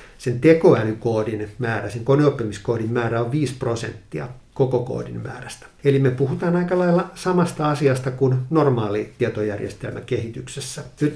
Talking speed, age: 130 wpm, 60-79